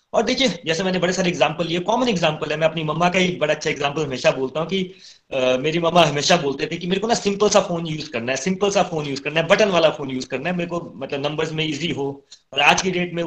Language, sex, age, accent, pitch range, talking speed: Hindi, male, 30-49, native, 150-180 Hz, 285 wpm